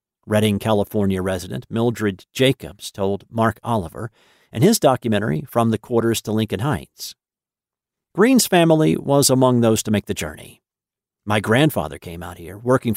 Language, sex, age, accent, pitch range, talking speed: English, male, 50-69, American, 105-130 Hz, 150 wpm